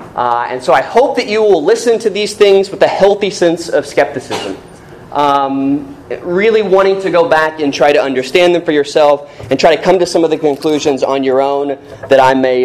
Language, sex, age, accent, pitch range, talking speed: English, male, 20-39, American, 135-180 Hz, 220 wpm